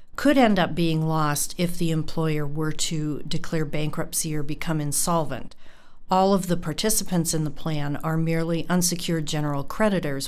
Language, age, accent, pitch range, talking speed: English, 50-69, American, 155-180 Hz, 160 wpm